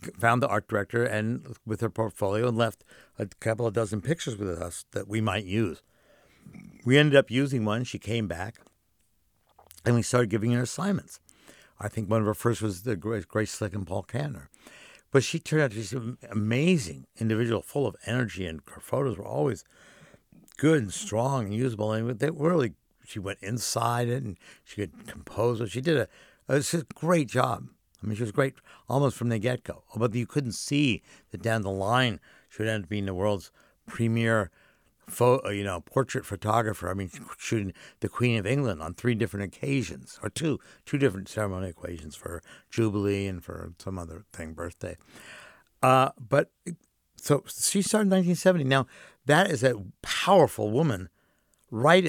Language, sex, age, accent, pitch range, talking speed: English, male, 60-79, American, 100-130 Hz, 185 wpm